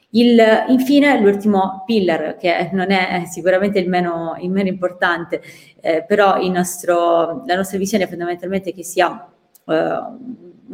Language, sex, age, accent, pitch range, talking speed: Italian, female, 20-39, native, 175-205 Hz, 140 wpm